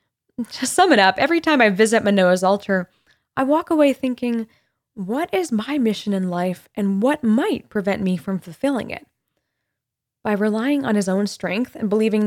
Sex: female